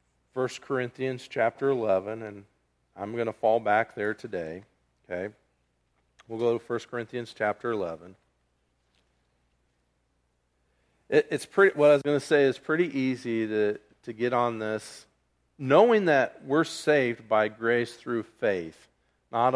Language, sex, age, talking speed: English, male, 50-69, 140 wpm